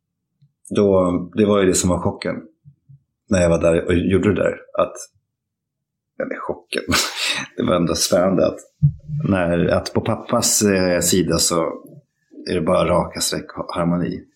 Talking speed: 145 wpm